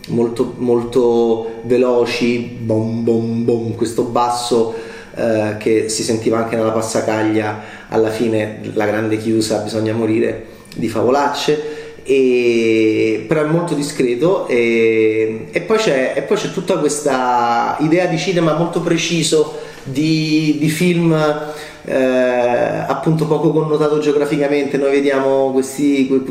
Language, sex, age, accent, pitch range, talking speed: Italian, male, 30-49, native, 120-150 Hz, 125 wpm